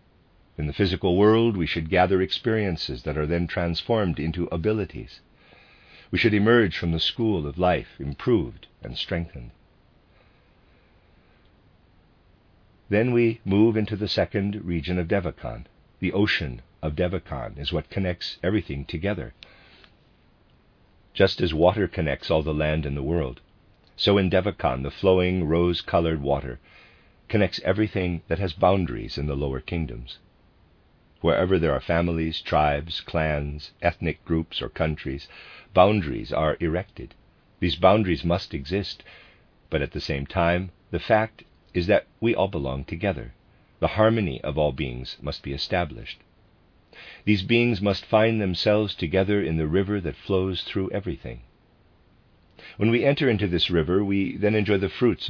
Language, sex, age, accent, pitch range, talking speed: English, male, 50-69, American, 80-100 Hz, 140 wpm